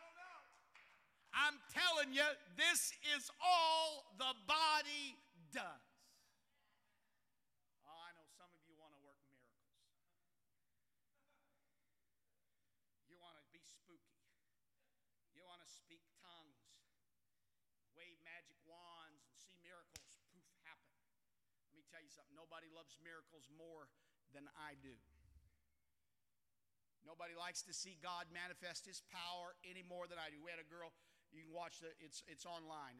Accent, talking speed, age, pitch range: American, 135 wpm, 50-69, 130-175 Hz